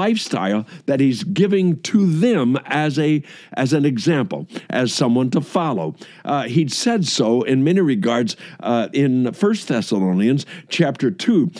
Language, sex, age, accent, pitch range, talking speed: English, male, 60-79, American, 135-185 Hz, 140 wpm